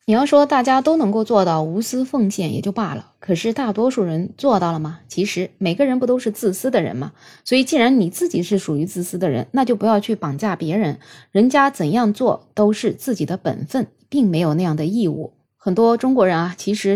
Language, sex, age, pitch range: Chinese, female, 20-39, 170-230 Hz